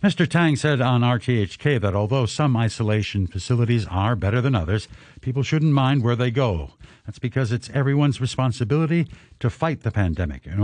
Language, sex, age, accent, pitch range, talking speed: English, male, 60-79, American, 100-140 Hz, 170 wpm